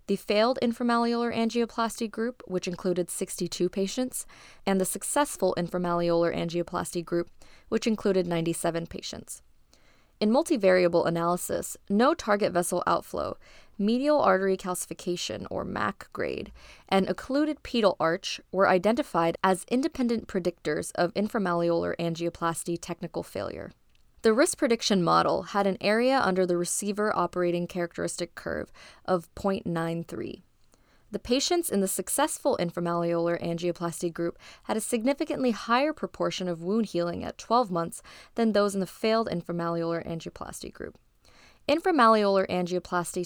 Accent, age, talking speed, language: American, 20-39, 125 wpm, English